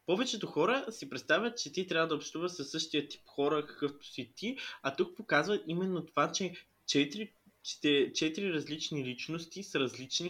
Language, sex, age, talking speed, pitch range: Bulgarian, male, 20-39, 155 wpm, 140-185 Hz